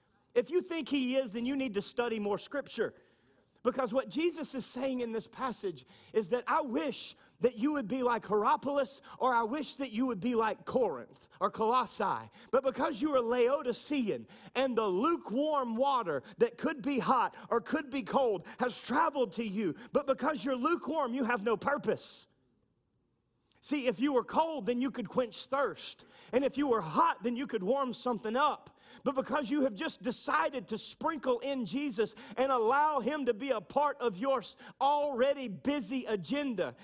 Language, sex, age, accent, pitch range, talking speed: English, male, 30-49, American, 230-285 Hz, 185 wpm